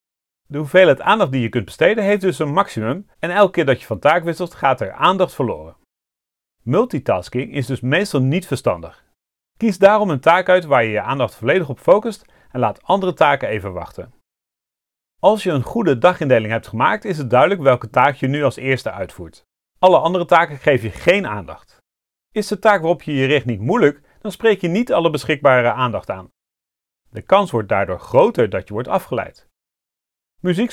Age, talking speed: 40-59, 190 wpm